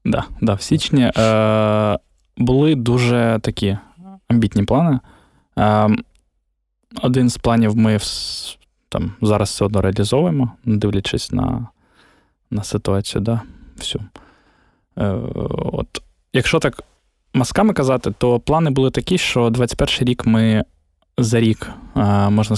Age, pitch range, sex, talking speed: 20-39, 105-125 Hz, male, 115 wpm